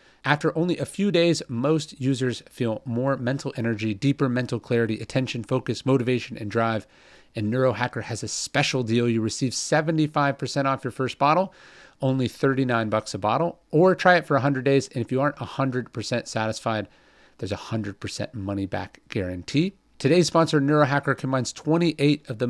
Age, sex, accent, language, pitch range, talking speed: 40-59, male, American, English, 110-145 Hz, 165 wpm